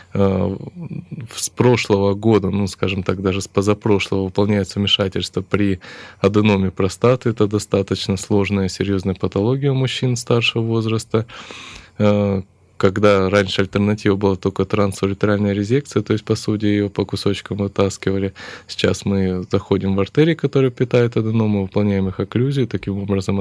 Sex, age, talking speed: male, 20-39, 130 wpm